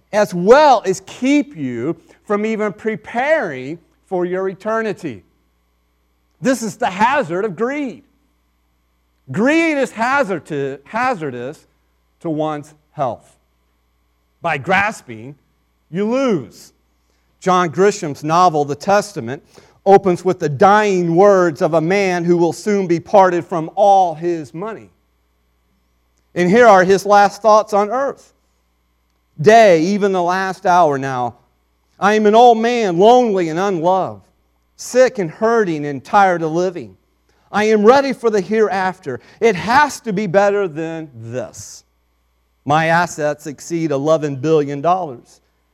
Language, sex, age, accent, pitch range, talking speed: English, male, 40-59, American, 140-200 Hz, 125 wpm